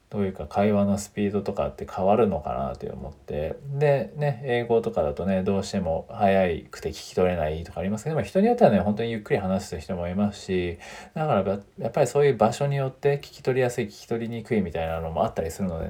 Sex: male